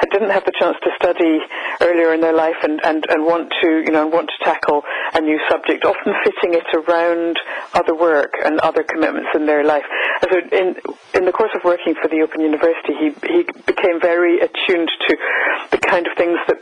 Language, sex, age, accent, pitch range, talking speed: English, female, 60-79, British, 160-215 Hz, 210 wpm